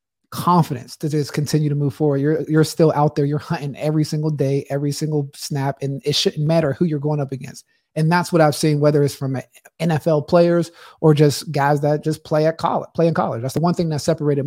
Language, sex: English, male